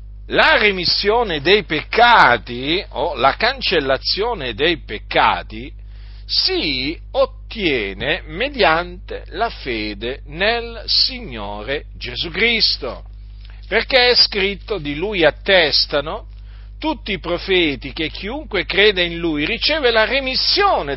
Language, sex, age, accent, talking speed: Italian, male, 50-69, native, 100 wpm